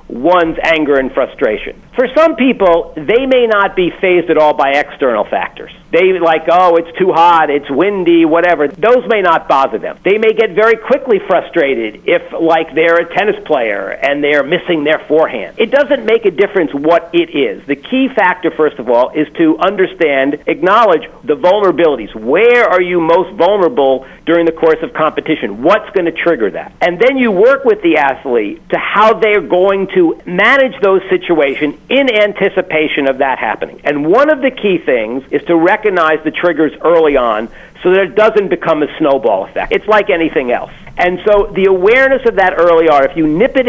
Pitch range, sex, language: 160-210 Hz, male, English